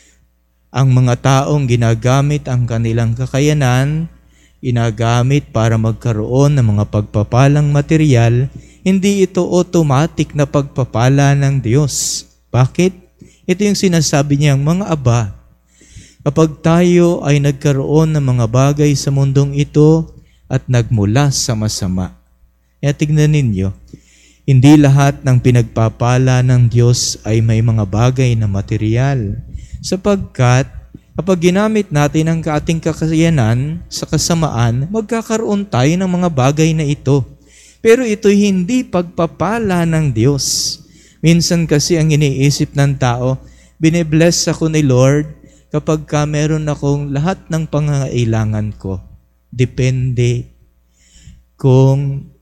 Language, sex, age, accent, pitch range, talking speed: Filipino, male, 20-39, native, 115-155 Hz, 110 wpm